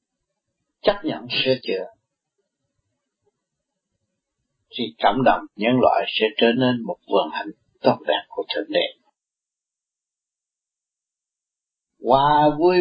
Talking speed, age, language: 110 wpm, 50-69, Vietnamese